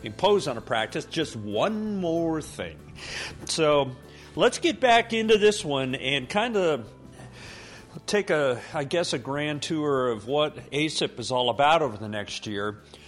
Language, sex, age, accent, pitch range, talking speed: English, male, 50-69, American, 120-160 Hz, 160 wpm